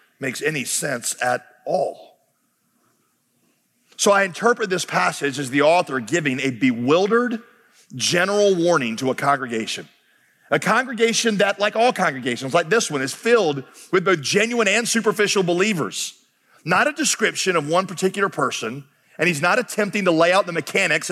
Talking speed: 155 wpm